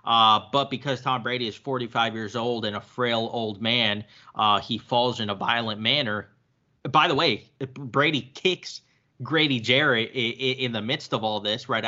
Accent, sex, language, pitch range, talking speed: American, male, English, 110-130 Hz, 175 wpm